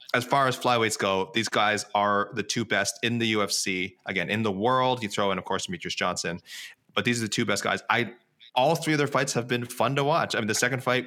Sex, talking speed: male, 260 wpm